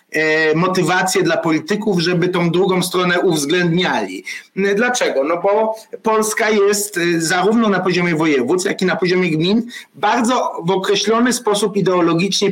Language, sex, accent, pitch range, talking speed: Polish, male, native, 155-200 Hz, 130 wpm